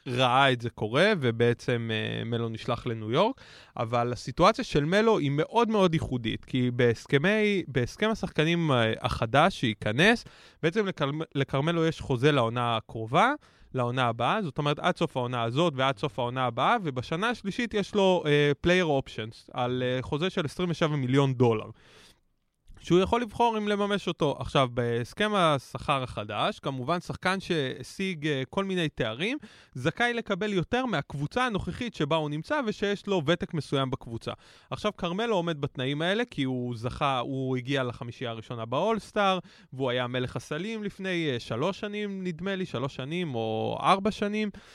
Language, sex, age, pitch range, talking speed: Hebrew, male, 20-39, 125-190 Hz, 150 wpm